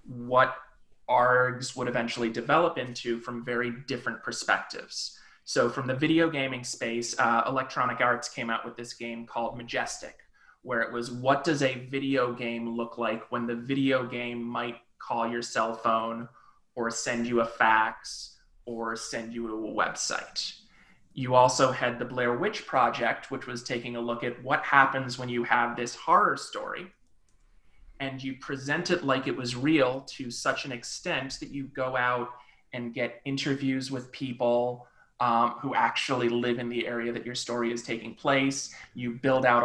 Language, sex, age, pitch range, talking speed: English, male, 20-39, 120-135 Hz, 170 wpm